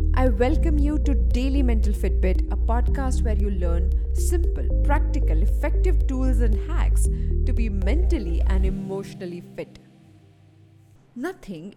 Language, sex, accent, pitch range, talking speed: English, female, Indian, 195-300 Hz, 125 wpm